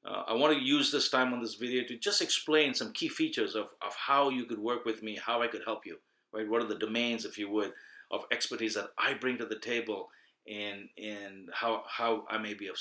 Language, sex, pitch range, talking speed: English, male, 110-140 Hz, 250 wpm